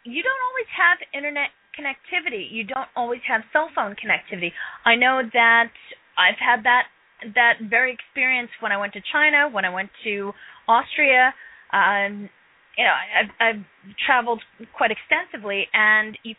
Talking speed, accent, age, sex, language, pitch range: 155 wpm, American, 30-49, female, English, 210-265 Hz